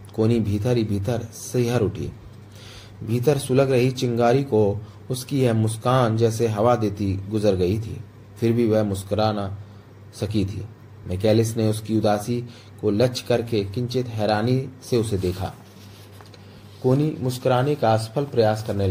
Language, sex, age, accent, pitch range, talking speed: Hindi, male, 30-49, native, 105-125 Hz, 115 wpm